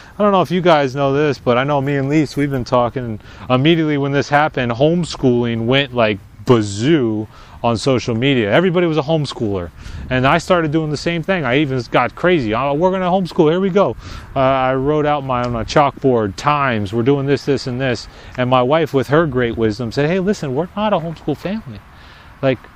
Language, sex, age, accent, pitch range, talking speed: English, male, 30-49, American, 115-155 Hz, 210 wpm